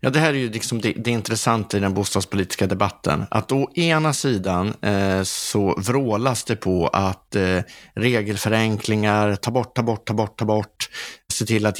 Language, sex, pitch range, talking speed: Swedish, male, 100-130 Hz, 185 wpm